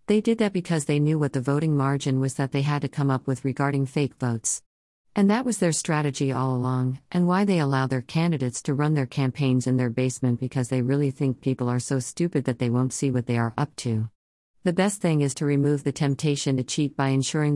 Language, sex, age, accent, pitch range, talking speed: English, female, 50-69, American, 130-160 Hz, 240 wpm